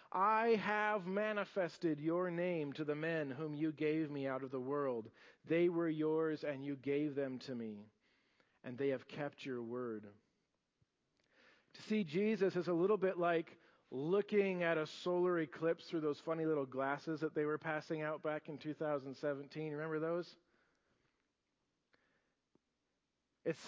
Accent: American